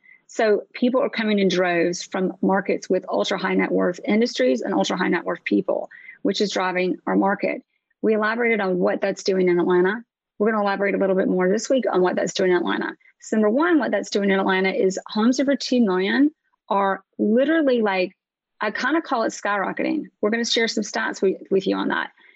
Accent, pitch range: American, 190-250 Hz